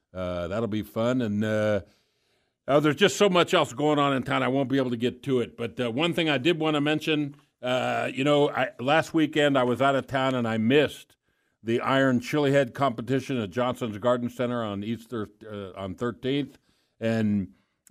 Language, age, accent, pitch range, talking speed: English, 50-69, American, 115-140 Hz, 210 wpm